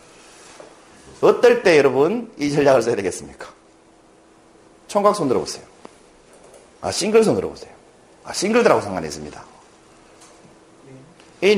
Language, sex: Korean, male